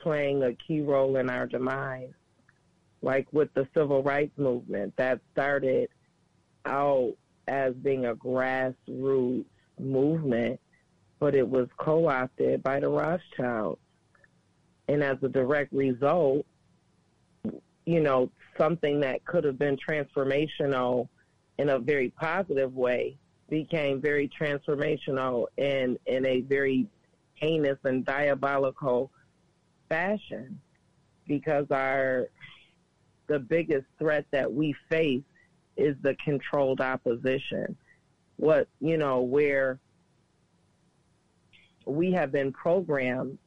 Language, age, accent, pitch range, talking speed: English, 40-59, American, 130-150 Hz, 110 wpm